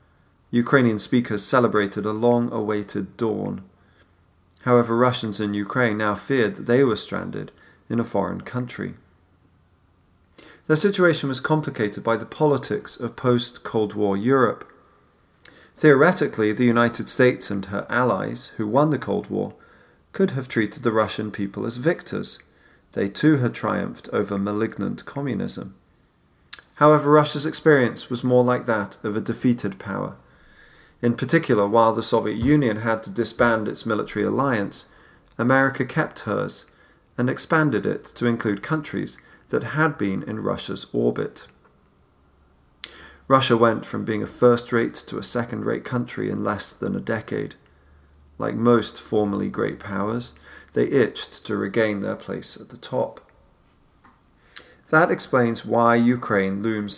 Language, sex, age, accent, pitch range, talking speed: English, male, 40-59, British, 100-125 Hz, 135 wpm